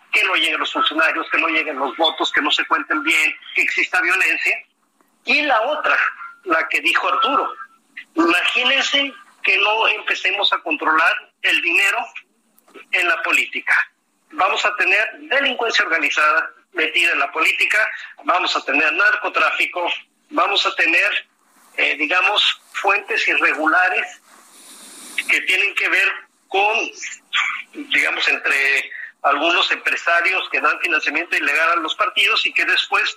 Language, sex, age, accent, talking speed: Spanish, male, 40-59, Mexican, 135 wpm